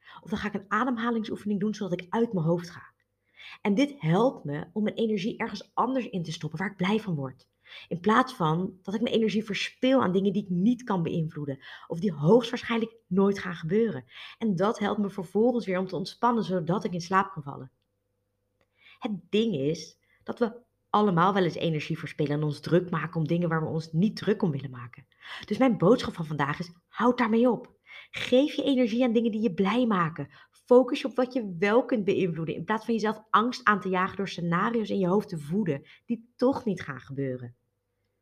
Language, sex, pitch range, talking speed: Dutch, female, 160-230 Hz, 215 wpm